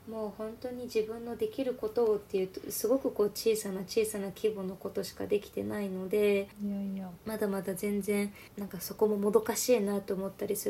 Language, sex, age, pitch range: Japanese, female, 20-39, 195-220 Hz